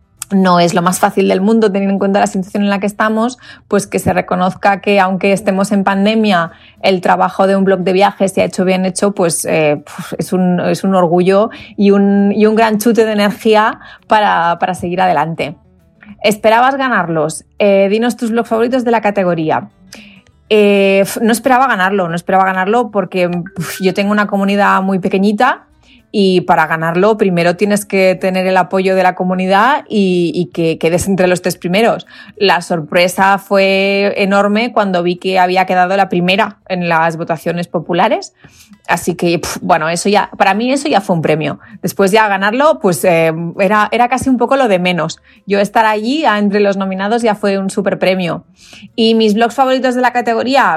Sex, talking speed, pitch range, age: female, 185 wpm, 180-210 Hz, 30-49